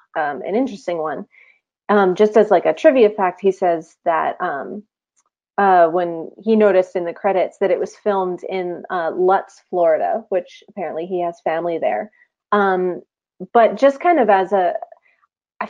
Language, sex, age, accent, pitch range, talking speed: English, female, 30-49, American, 175-210 Hz, 170 wpm